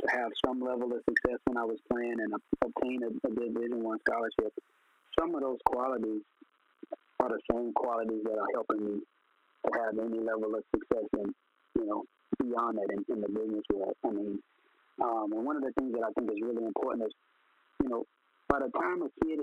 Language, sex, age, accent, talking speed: English, male, 40-59, American, 205 wpm